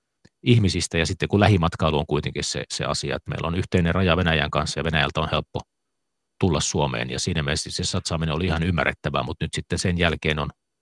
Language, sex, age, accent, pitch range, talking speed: Finnish, male, 40-59, native, 75-90 Hz, 205 wpm